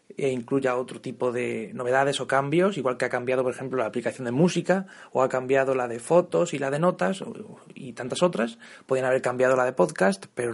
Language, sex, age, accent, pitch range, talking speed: Spanish, male, 30-49, Spanish, 125-160 Hz, 215 wpm